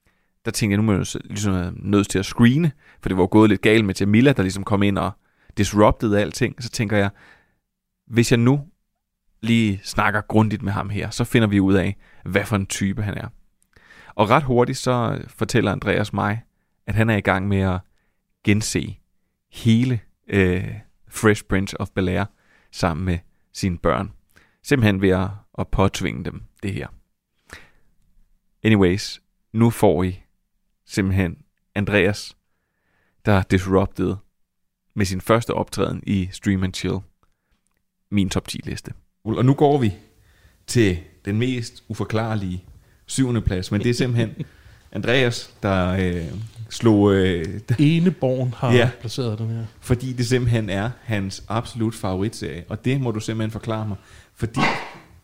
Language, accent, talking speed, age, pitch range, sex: Danish, native, 150 wpm, 30-49, 95-115 Hz, male